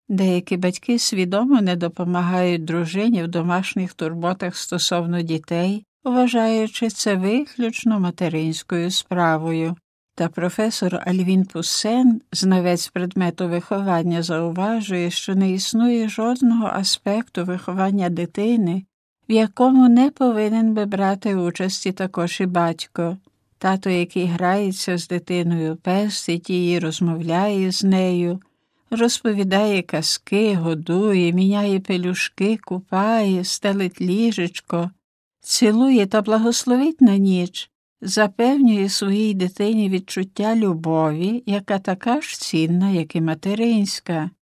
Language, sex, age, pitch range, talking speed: Ukrainian, female, 60-79, 175-215 Hz, 105 wpm